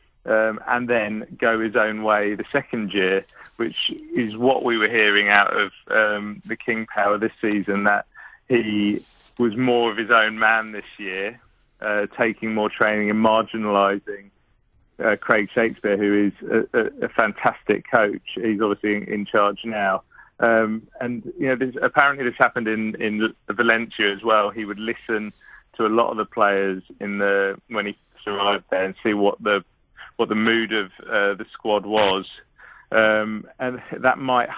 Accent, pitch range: British, 100-115 Hz